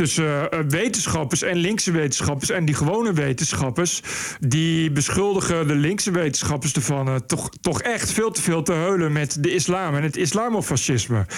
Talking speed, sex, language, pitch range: 160 wpm, male, Dutch, 145-180 Hz